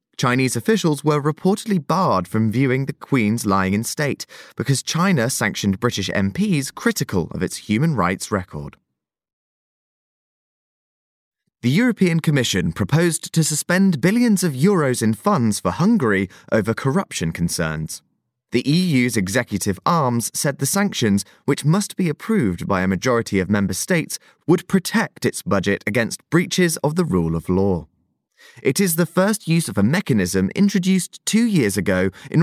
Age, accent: 20-39, British